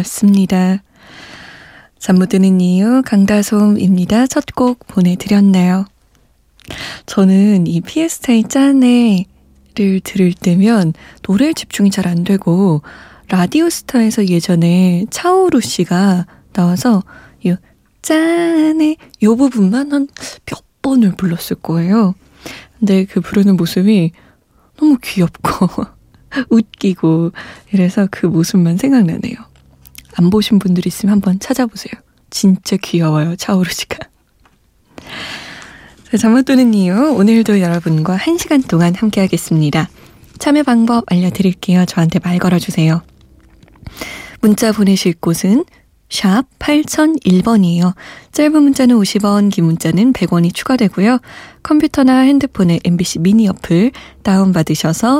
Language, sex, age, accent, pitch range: Korean, female, 20-39, native, 180-245 Hz